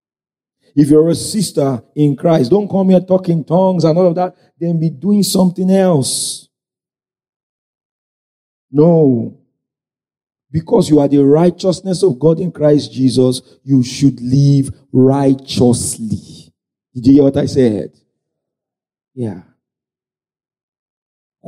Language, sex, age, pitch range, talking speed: English, male, 50-69, 135-185 Hz, 120 wpm